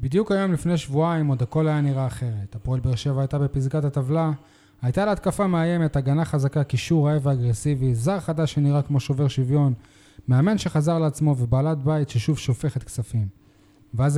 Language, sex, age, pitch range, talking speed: Hebrew, male, 20-39, 130-170 Hz, 165 wpm